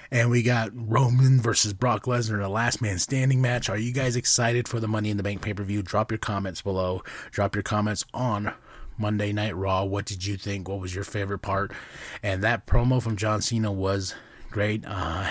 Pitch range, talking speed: 100-125 Hz, 205 wpm